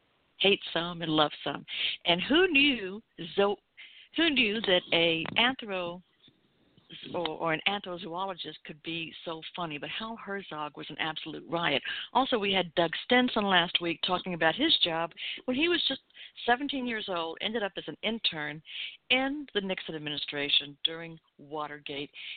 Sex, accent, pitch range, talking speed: female, American, 155-215 Hz, 155 wpm